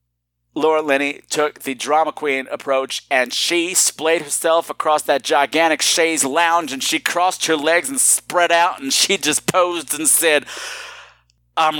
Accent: American